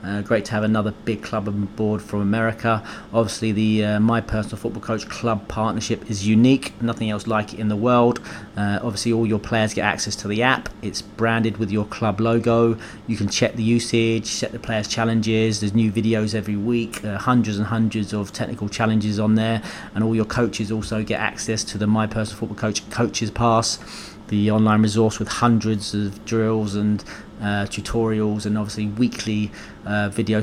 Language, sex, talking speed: English, male, 195 wpm